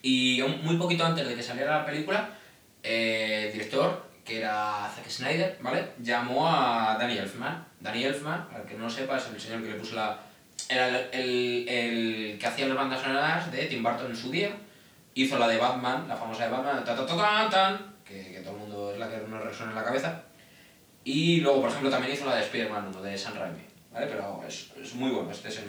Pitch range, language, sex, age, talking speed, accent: 110-140 Hz, Spanish, male, 20-39, 170 wpm, Spanish